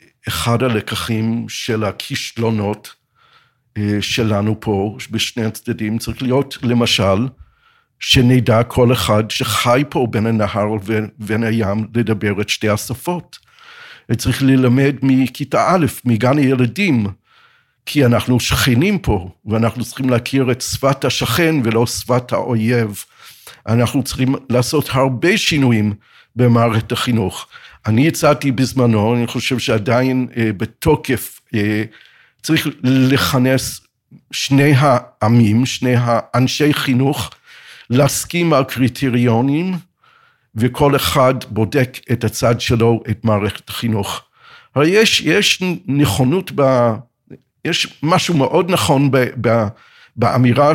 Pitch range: 115-135 Hz